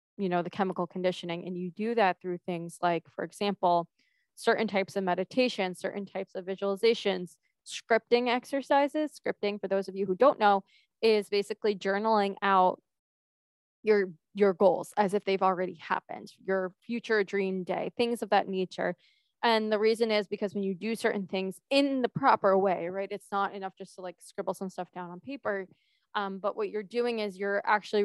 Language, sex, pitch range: English, female, 190-215 Hz